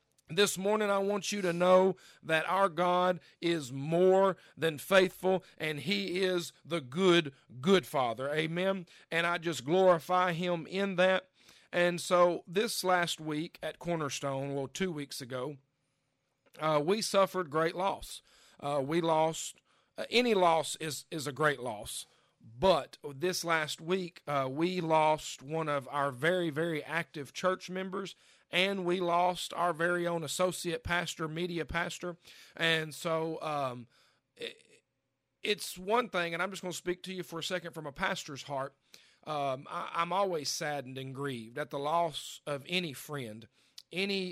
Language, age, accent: English, 40-59, American